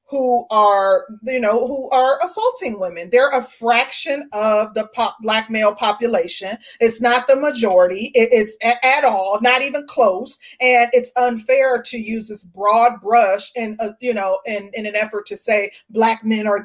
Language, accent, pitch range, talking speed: English, American, 210-250 Hz, 175 wpm